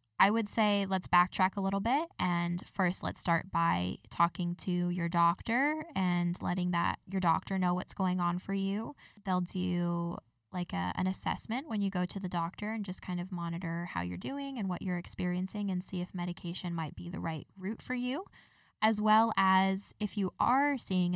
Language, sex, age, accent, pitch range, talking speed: English, female, 10-29, American, 175-200 Hz, 200 wpm